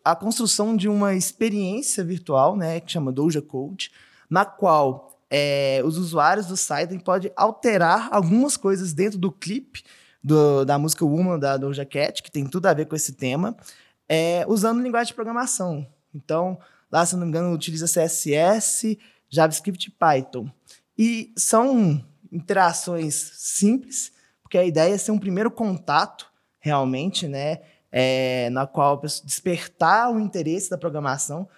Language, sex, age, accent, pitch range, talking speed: Portuguese, male, 20-39, Brazilian, 150-200 Hz, 145 wpm